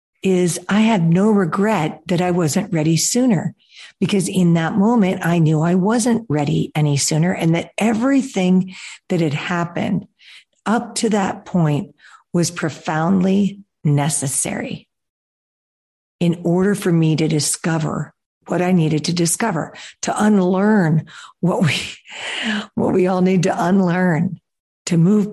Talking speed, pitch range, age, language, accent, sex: 135 wpm, 170-210 Hz, 50-69, English, American, female